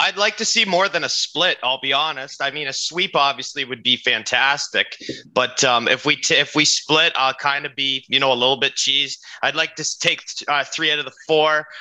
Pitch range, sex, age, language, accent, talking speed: 135-170 Hz, male, 30-49, English, American, 240 wpm